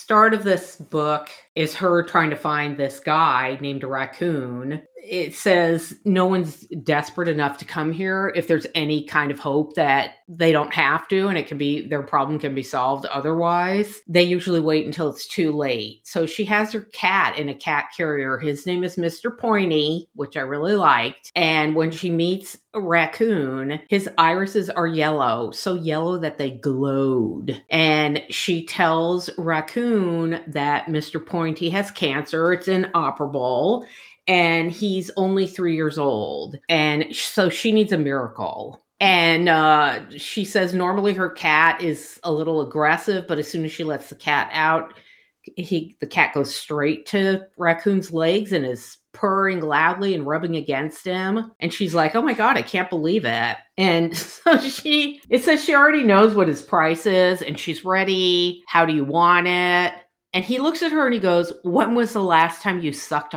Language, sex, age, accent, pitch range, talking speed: English, female, 50-69, American, 150-185 Hz, 175 wpm